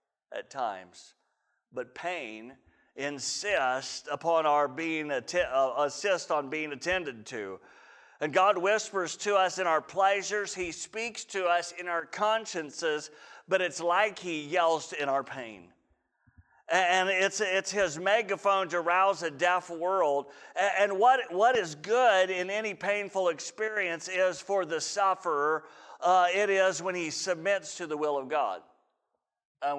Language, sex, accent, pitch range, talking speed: English, male, American, 145-185 Hz, 145 wpm